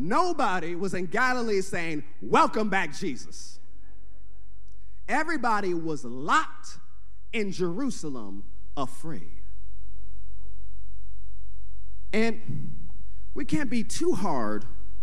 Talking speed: 80 wpm